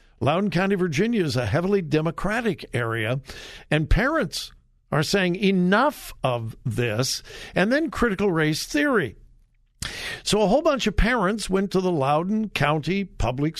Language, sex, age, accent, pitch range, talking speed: English, male, 60-79, American, 135-215 Hz, 140 wpm